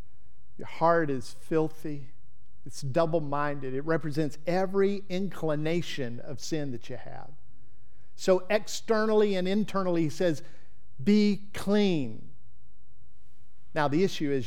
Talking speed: 110 wpm